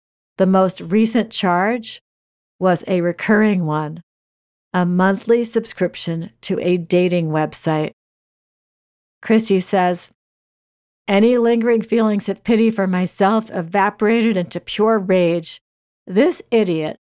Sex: female